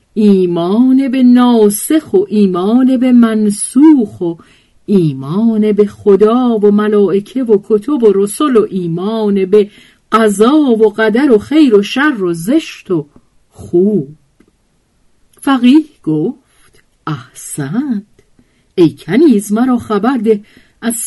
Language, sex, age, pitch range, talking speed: Persian, female, 50-69, 170-235 Hz, 115 wpm